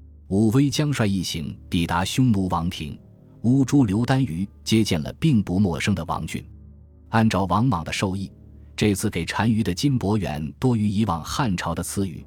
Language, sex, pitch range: Chinese, male, 80-105 Hz